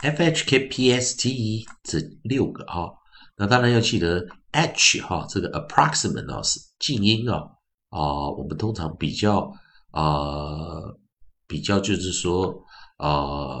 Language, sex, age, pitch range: Chinese, male, 50-69, 80-125 Hz